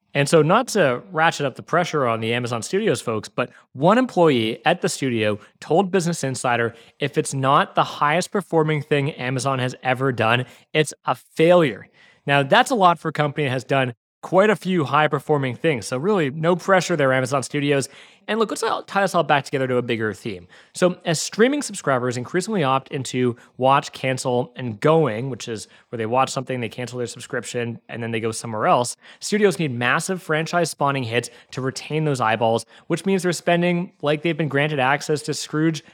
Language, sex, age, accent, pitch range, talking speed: English, male, 30-49, American, 130-175 Hz, 195 wpm